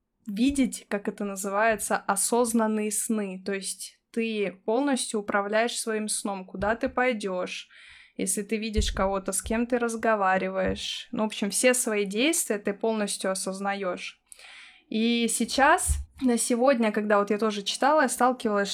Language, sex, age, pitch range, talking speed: Russian, female, 20-39, 205-245 Hz, 140 wpm